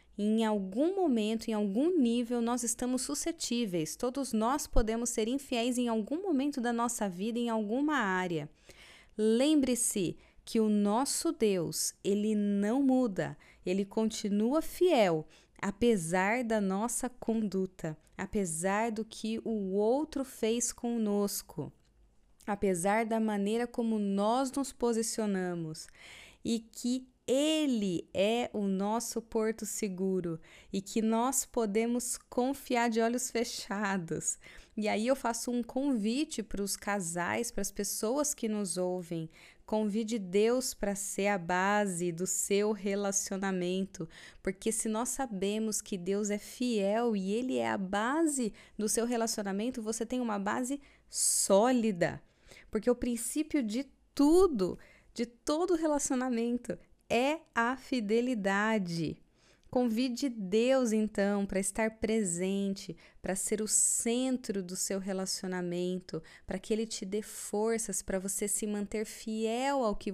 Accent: Brazilian